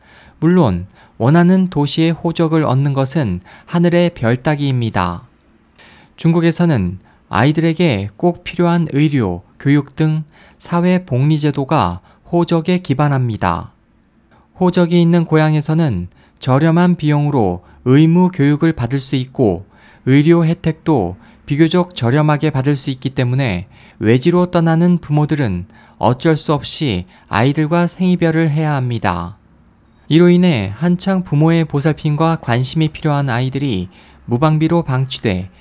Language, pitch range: Korean, 115-165 Hz